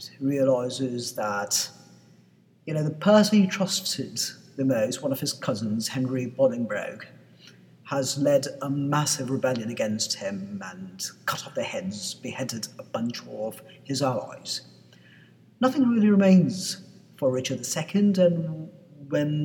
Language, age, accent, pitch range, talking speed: English, 40-59, British, 130-170 Hz, 130 wpm